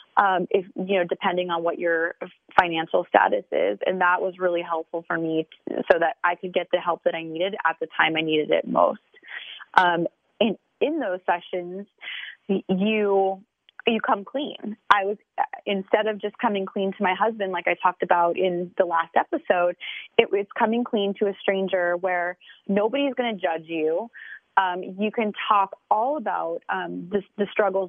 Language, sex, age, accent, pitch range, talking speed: English, female, 20-39, American, 180-215 Hz, 185 wpm